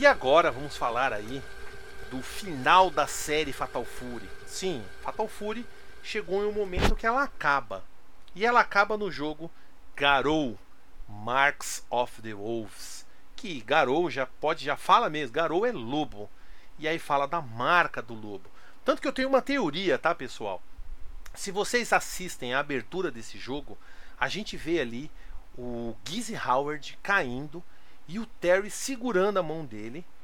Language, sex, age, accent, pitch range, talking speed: Portuguese, male, 40-59, Brazilian, 140-220 Hz, 155 wpm